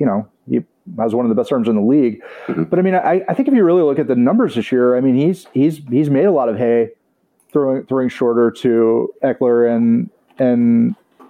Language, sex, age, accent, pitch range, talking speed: English, male, 30-49, American, 120-145 Hz, 235 wpm